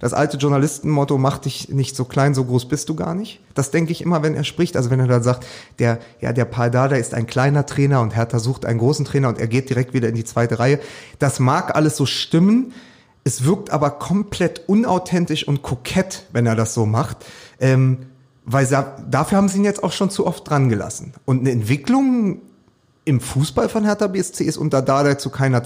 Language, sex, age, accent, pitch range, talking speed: German, male, 30-49, German, 125-155 Hz, 220 wpm